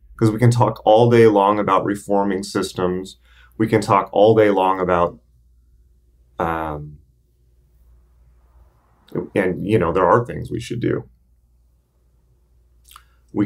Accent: American